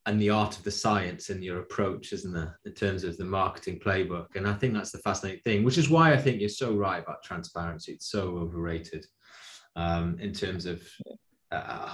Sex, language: male, English